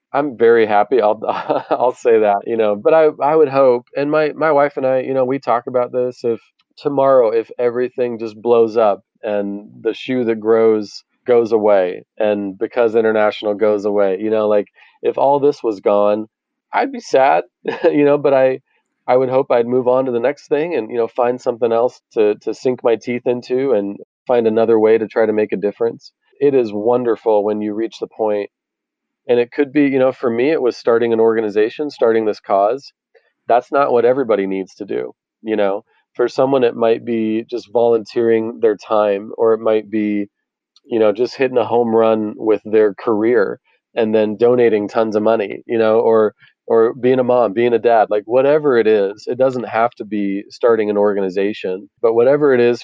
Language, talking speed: English, 205 wpm